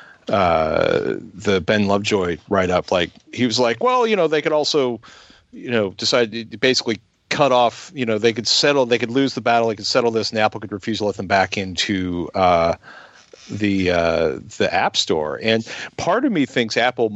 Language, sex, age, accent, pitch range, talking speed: English, male, 40-59, American, 100-125 Hz, 205 wpm